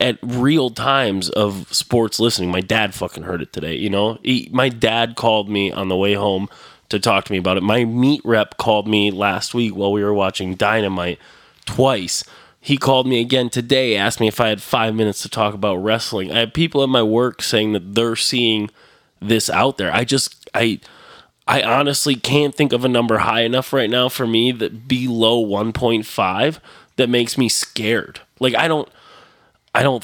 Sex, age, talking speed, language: male, 20-39, 195 wpm, English